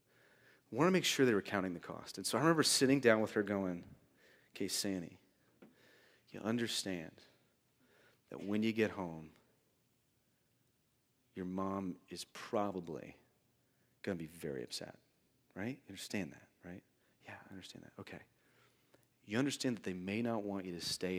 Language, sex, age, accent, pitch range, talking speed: English, male, 30-49, American, 95-125 Hz, 155 wpm